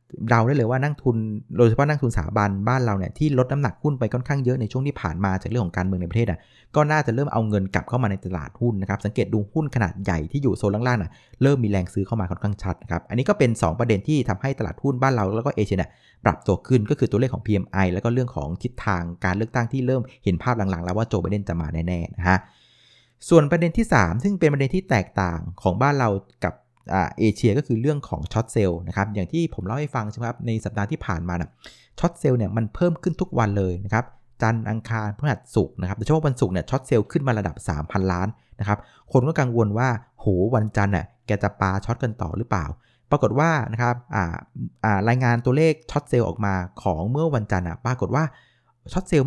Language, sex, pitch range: Thai, male, 100-130 Hz